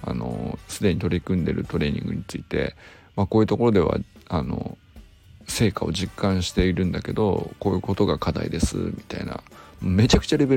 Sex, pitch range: male, 90-120 Hz